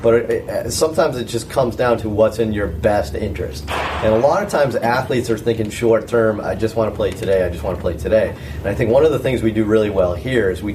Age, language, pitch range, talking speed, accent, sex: 30-49, English, 105-120 Hz, 270 wpm, American, male